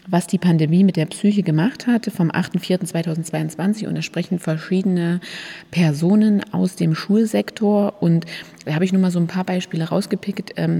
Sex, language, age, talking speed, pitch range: female, German, 30-49, 160 wpm, 165-195 Hz